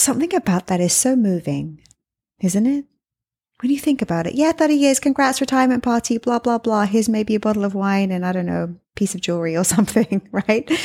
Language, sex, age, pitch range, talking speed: English, female, 30-49, 175-235 Hz, 215 wpm